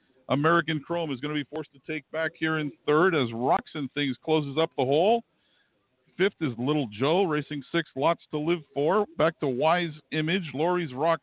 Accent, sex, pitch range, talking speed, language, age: American, male, 150-180 Hz, 200 wpm, English, 50-69